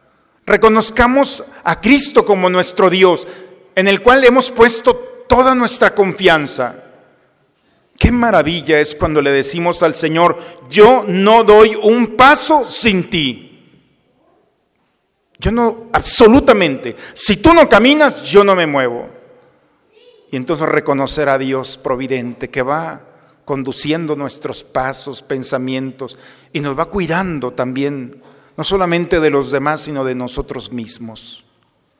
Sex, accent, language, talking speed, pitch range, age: male, Mexican, Spanish, 125 wpm, 130-185 Hz, 50-69